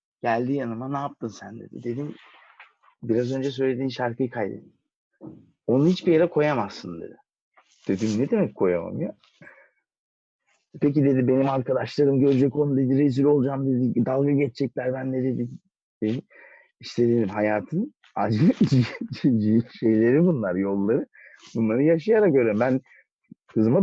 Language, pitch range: Turkish, 105-140 Hz